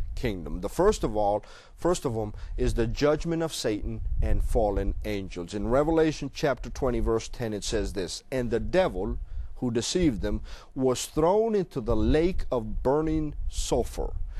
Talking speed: 165 wpm